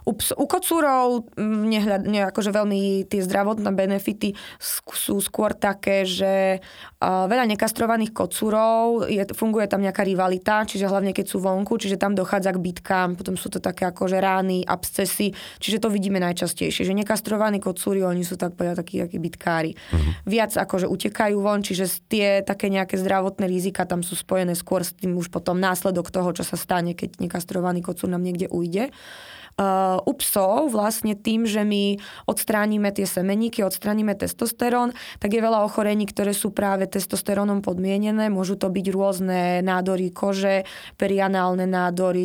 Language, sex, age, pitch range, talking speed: Slovak, female, 20-39, 180-205 Hz, 160 wpm